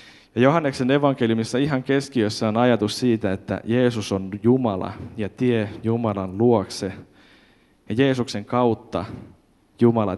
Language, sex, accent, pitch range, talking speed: Finnish, male, native, 100-120 Hz, 120 wpm